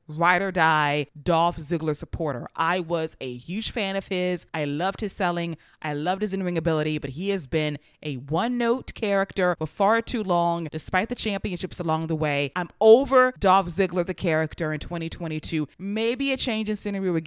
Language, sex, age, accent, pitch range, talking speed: English, female, 20-39, American, 155-195 Hz, 175 wpm